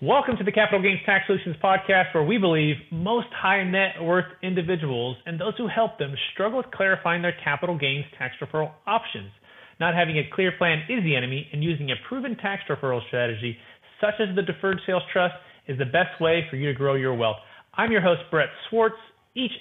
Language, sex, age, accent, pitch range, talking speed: English, male, 30-49, American, 145-190 Hz, 205 wpm